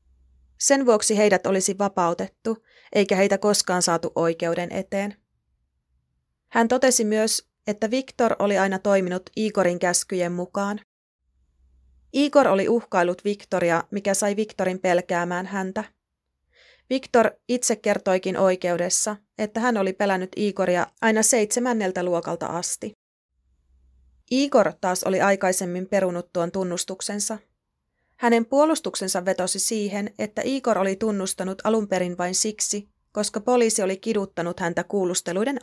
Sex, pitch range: female, 175-215 Hz